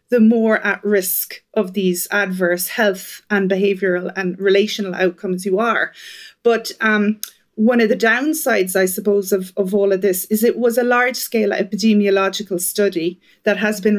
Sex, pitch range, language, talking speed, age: female, 190-225 Hz, English, 165 wpm, 30-49